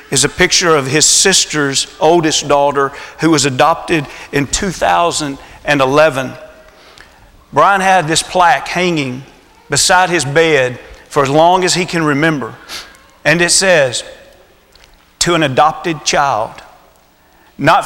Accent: American